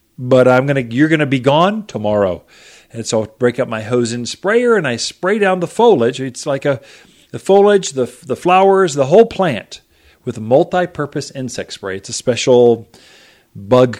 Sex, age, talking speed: male, 40-59, 185 wpm